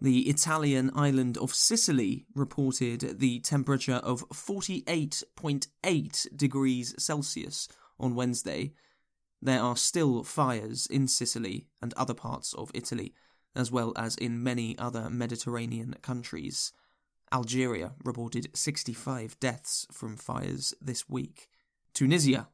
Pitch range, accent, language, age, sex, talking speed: 120-145 Hz, British, English, 20-39, male, 110 wpm